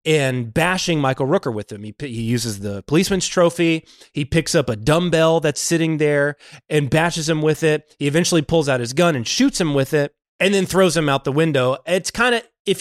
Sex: male